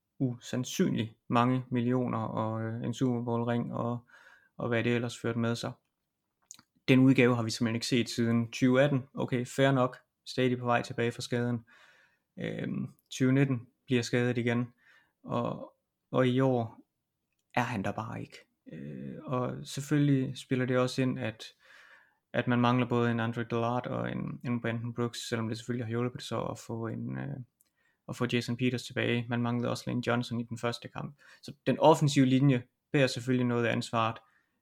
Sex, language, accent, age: male, Danish, native, 30-49